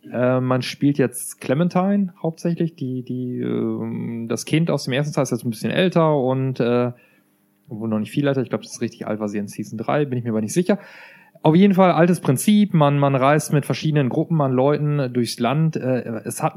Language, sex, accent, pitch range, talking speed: German, male, German, 120-145 Hz, 225 wpm